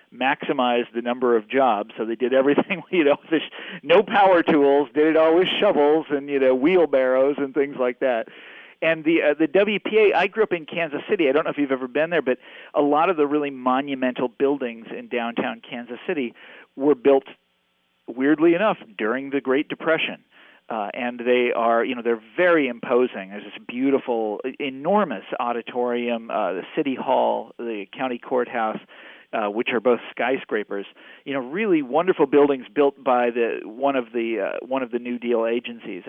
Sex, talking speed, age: male, 185 wpm, 40-59